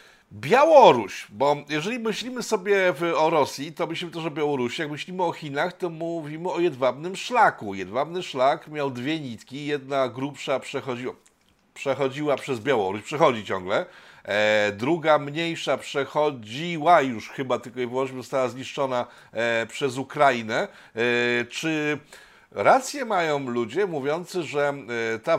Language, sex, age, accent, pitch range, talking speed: Polish, male, 50-69, native, 125-160 Hz, 125 wpm